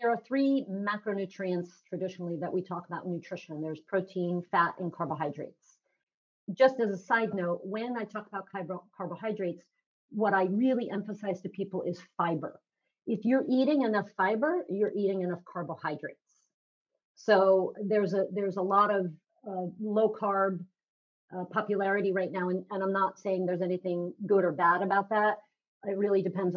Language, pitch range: English, 180-215 Hz